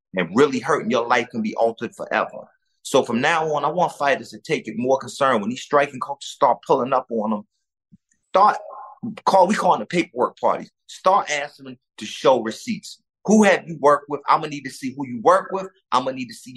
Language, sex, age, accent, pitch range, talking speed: English, male, 30-49, American, 110-165 Hz, 230 wpm